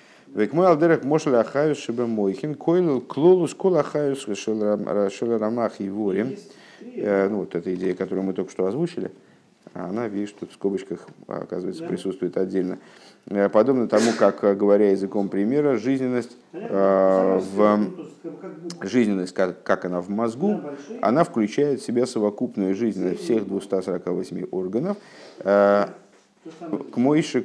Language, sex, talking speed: Russian, male, 95 wpm